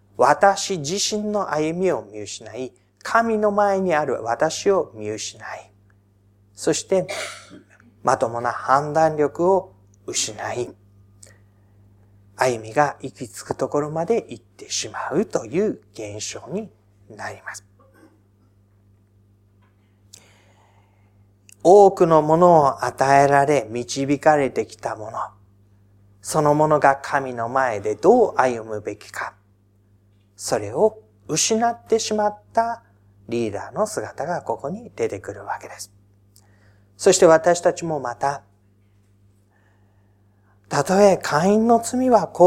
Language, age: Japanese, 40-59